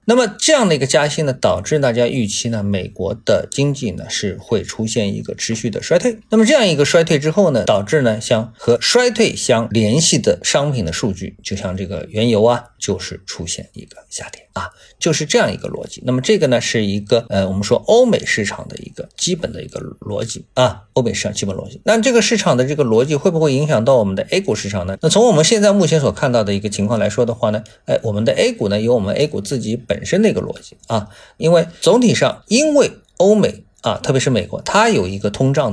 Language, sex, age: Chinese, male, 50-69